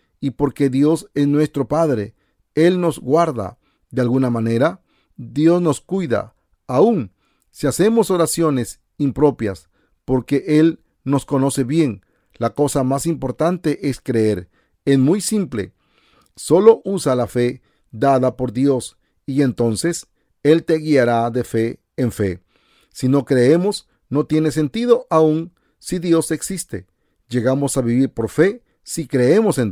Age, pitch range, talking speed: 40-59, 115-160 Hz, 135 wpm